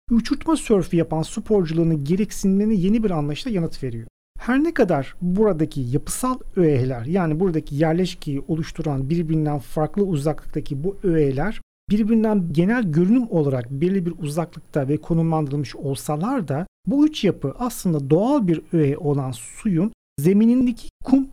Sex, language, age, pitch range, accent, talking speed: male, Turkish, 40-59, 145-210 Hz, native, 130 wpm